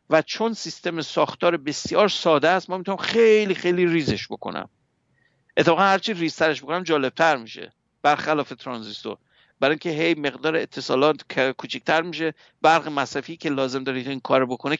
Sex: male